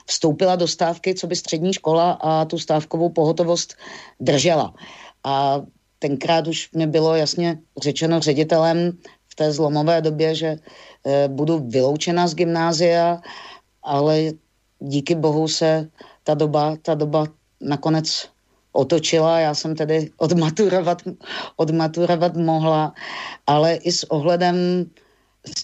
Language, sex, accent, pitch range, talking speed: Czech, female, native, 155-170 Hz, 115 wpm